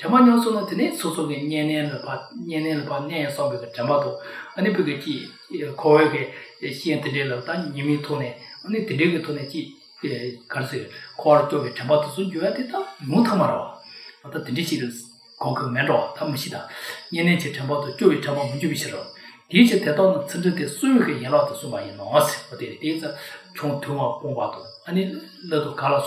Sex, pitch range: male, 145-190 Hz